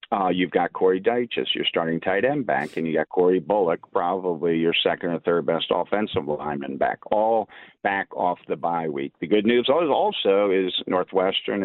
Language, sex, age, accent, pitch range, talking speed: English, male, 50-69, American, 85-115 Hz, 185 wpm